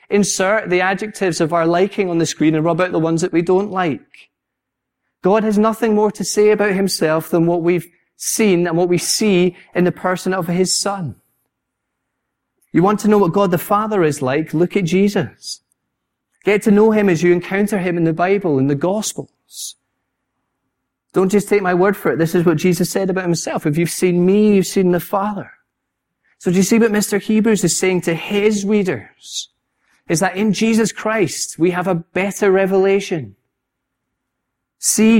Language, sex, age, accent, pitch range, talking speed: English, male, 30-49, British, 160-200 Hz, 190 wpm